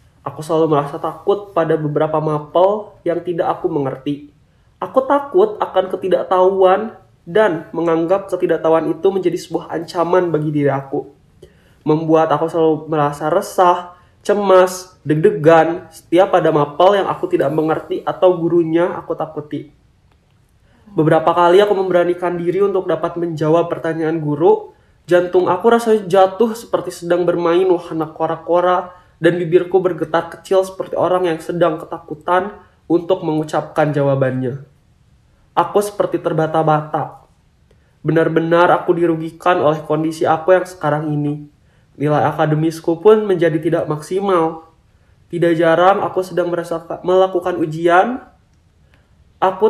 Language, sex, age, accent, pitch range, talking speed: Indonesian, male, 20-39, native, 155-185 Hz, 120 wpm